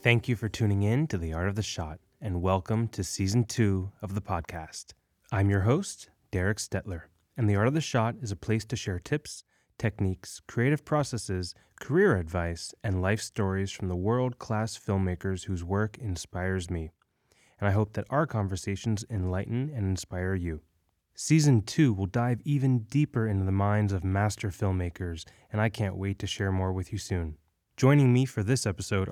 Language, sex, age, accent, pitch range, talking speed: English, male, 20-39, American, 95-125 Hz, 185 wpm